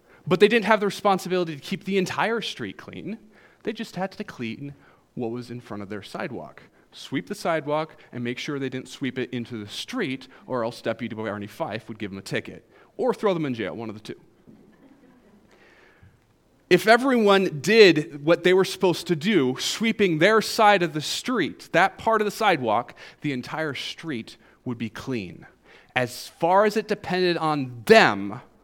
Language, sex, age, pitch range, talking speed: English, male, 30-49, 125-195 Hz, 185 wpm